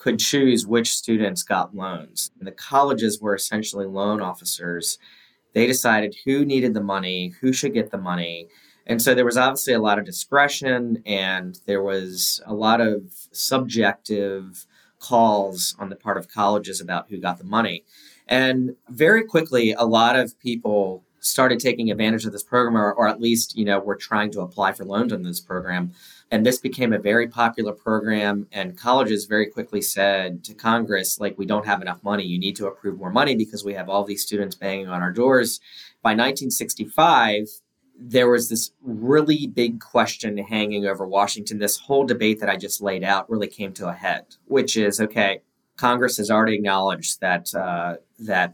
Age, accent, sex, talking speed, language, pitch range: 30-49, American, male, 185 wpm, English, 100-120 Hz